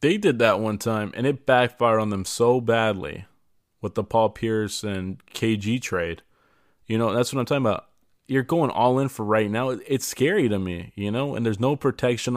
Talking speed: 210 wpm